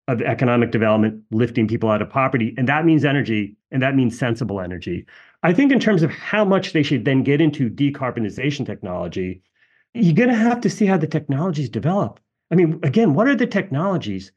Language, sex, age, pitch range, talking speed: English, male, 40-59, 115-170 Hz, 200 wpm